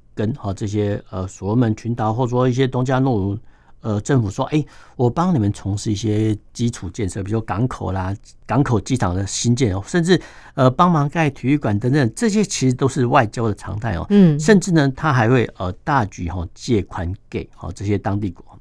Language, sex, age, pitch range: Chinese, male, 60-79, 100-130 Hz